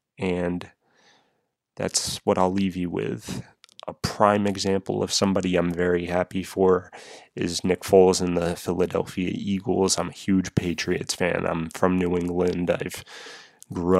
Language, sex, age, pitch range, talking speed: English, male, 20-39, 85-95 Hz, 150 wpm